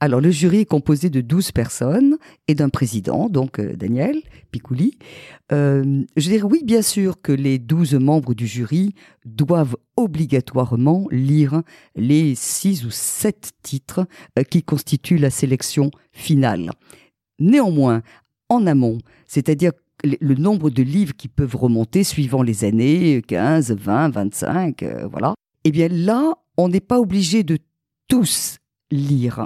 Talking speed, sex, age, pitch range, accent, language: 140 wpm, female, 50-69, 125-175 Hz, French, French